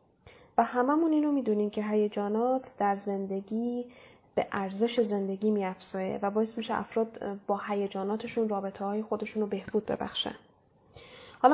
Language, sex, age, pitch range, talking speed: Persian, female, 10-29, 205-245 Hz, 130 wpm